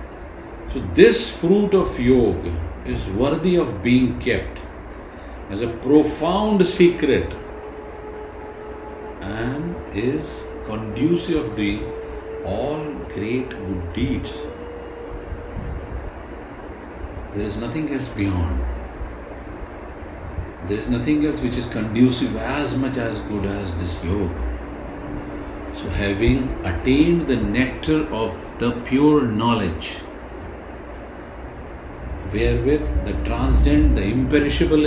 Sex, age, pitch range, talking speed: male, 50-69, 85-145 Hz, 100 wpm